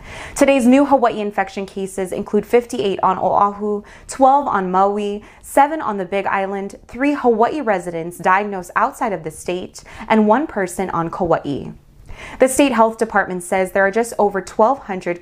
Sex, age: female, 20-39